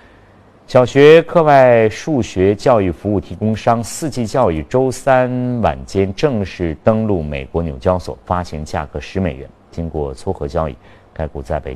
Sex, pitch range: male, 75-100 Hz